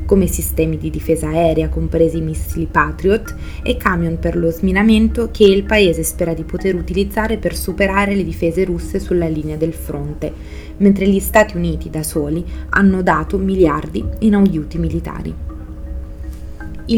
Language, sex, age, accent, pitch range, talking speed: Italian, female, 20-39, native, 155-195 Hz, 150 wpm